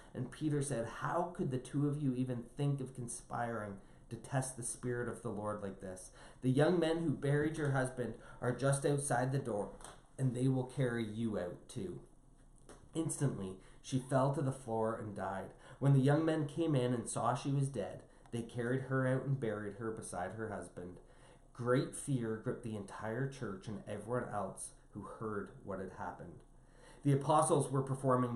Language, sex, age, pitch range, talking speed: English, male, 30-49, 110-135 Hz, 185 wpm